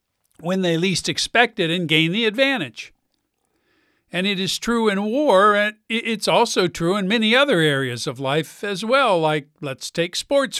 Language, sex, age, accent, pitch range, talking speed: English, male, 50-69, American, 165-220 Hz, 170 wpm